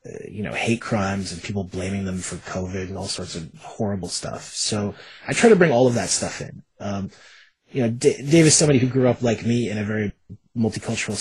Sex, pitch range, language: male, 95-125 Hz, English